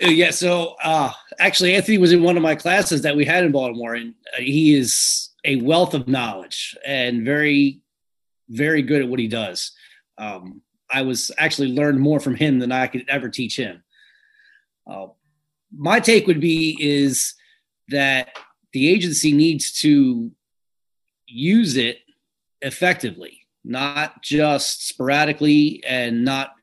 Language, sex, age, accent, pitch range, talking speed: English, male, 30-49, American, 135-170 Hz, 145 wpm